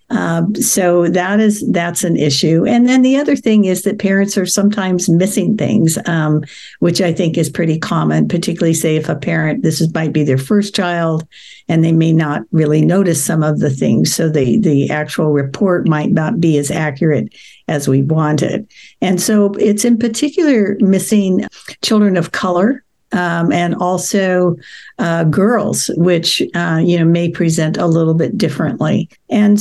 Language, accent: English, American